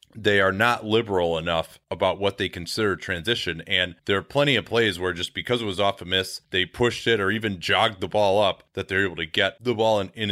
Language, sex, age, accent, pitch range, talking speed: English, male, 30-49, American, 95-115 Hz, 245 wpm